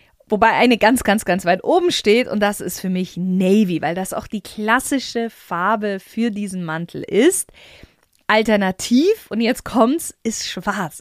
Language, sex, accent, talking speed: German, female, German, 165 wpm